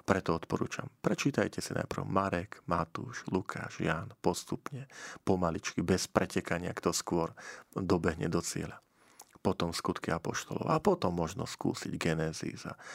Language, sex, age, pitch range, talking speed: Slovak, male, 40-59, 90-100 Hz, 120 wpm